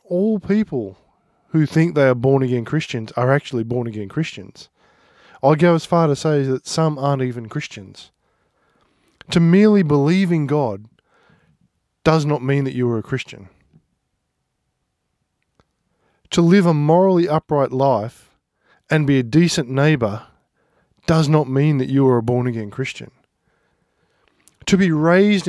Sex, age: male, 20-39